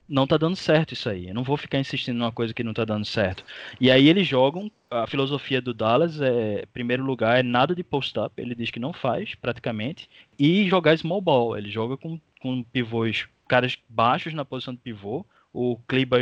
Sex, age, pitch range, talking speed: male, 20-39, 115-145 Hz, 210 wpm